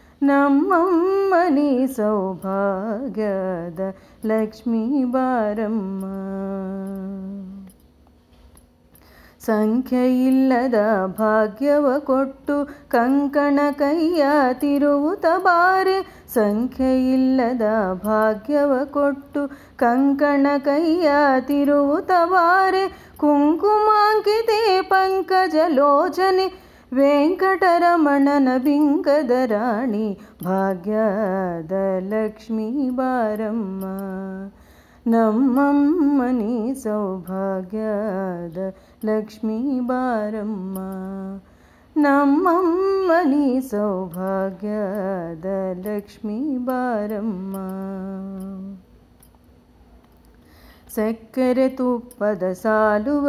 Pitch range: 210-290 Hz